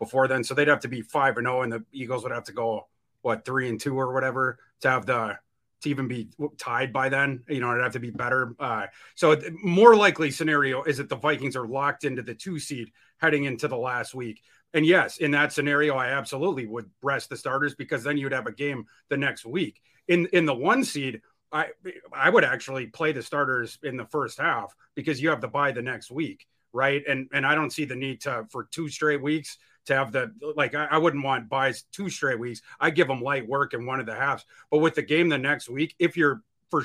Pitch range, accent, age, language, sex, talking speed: 130-155 Hz, American, 30-49, English, male, 245 wpm